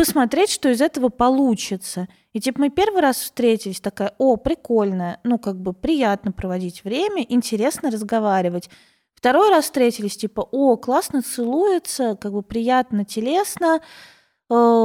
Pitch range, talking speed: 220-275 Hz, 135 wpm